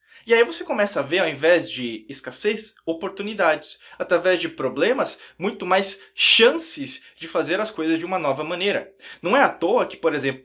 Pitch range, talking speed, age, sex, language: 155-225 Hz, 185 wpm, 20-39, male, Portuguese